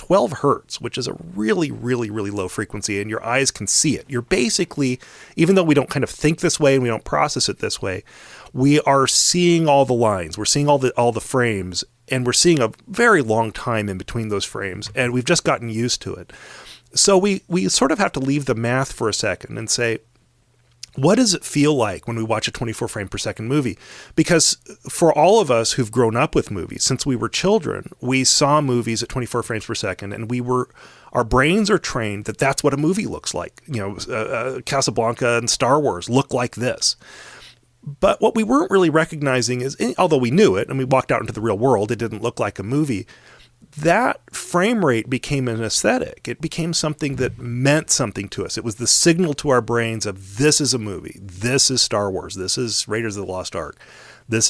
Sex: male